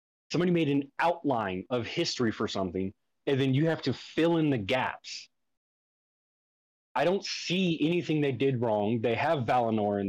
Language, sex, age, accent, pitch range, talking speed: English, male, 30-49, American, 115-140 Hz, 165 wpm